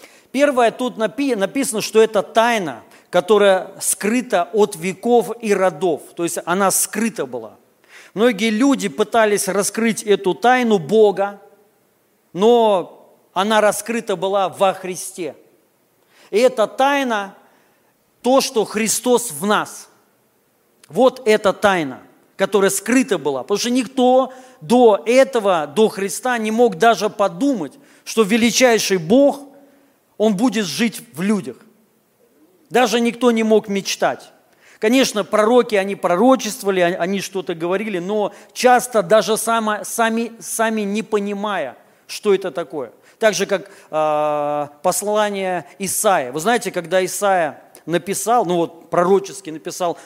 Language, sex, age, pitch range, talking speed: Russian, male, 40-59, 190-230 Hz, 120 wpm